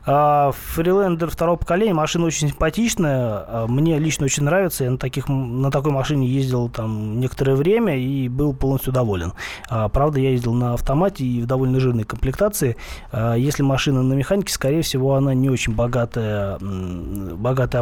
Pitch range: 120-150 Hz